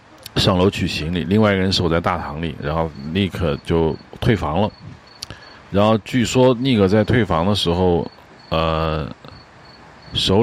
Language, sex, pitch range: Chinese, male, 85-110 Hz